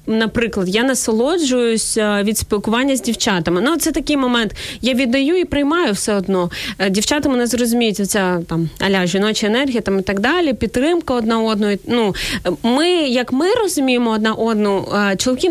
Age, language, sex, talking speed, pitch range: 20-39, Ukrainian, female, 160 wpm, 215-265 Hz